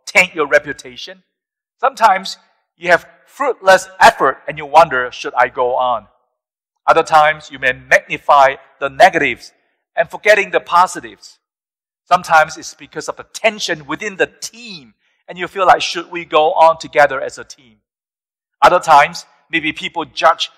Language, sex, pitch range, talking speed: English, male, 150-205 Hz, 150 wpm